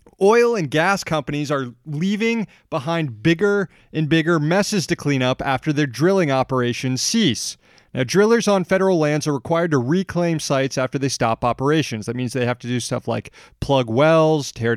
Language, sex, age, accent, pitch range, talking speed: English, male, 30-49, American, 125-170 Hz, 180 wpm